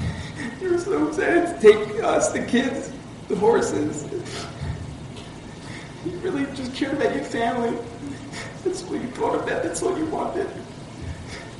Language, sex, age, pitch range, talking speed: English, male, 40-59, 200-280 Hz, 140 wpm